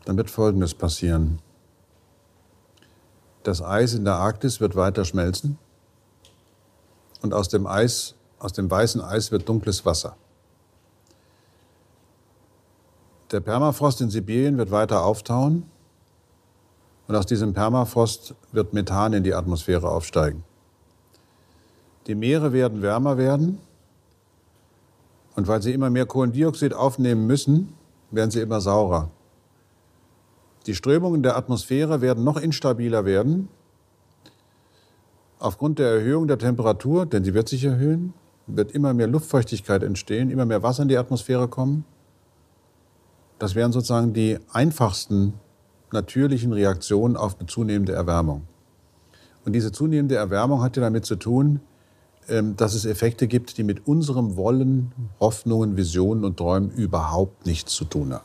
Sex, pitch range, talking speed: male, 95-125 Hz, 125 wpm